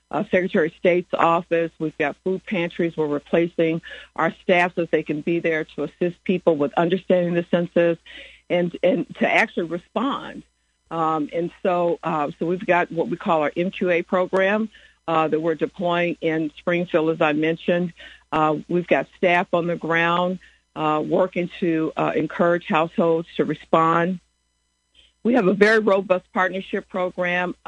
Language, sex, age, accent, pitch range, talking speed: English, female, 60-79, American, 160-180 Hz, 160 wpm